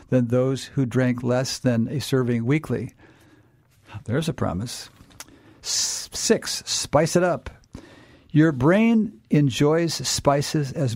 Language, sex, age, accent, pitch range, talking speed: English, male, 50-69, American, 125-155 Hz, 120 wpm